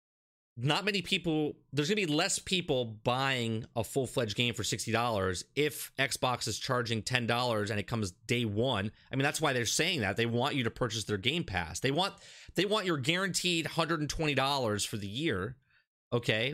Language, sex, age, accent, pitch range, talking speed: English, male, 30-49, American, 110-145 Hz, 185 wpm